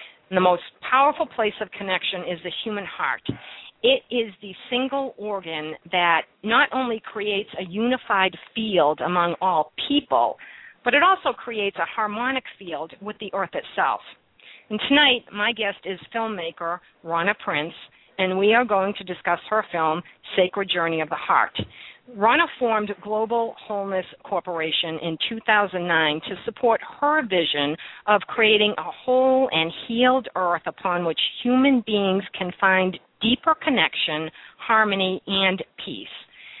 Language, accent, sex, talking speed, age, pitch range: English, American, female, 140 wpm, 50-69, 180-235 Hz